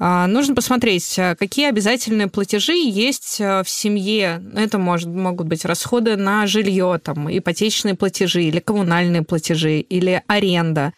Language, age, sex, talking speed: Russian, 20-39, female, 125 wpm